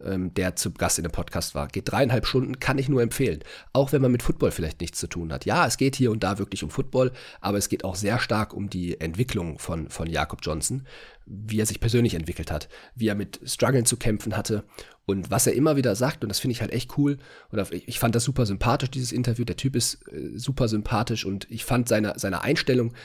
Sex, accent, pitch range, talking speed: male, German, 100-125 Hz, 235 wpm